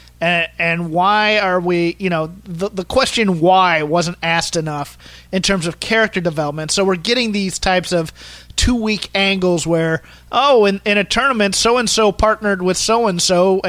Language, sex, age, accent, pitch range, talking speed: English, male, 30-49, American, 160-210 Hz, 165 wpm